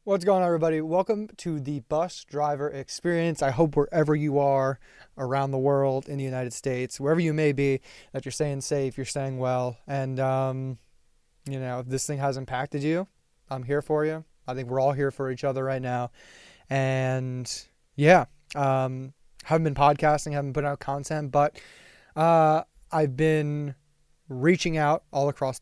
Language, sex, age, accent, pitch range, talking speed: English, male, 20-39, American, 135-150 Hz, 175 wpm